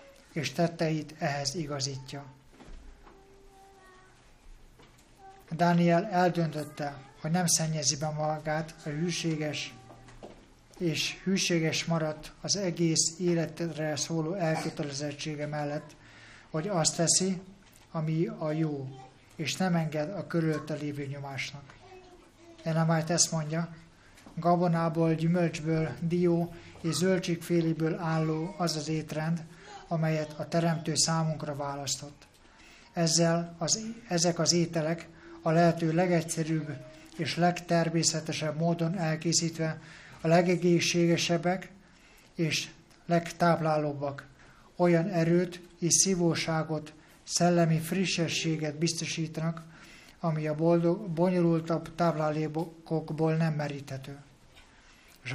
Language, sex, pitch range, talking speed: Hungarian, male, 155-170 Hz, 90 wpm